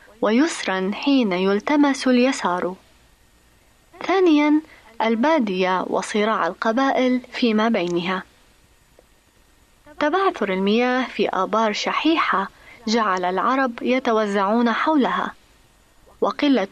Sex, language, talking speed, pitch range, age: female, Arabic, 70 wpm, 200-280 Hz, 20-39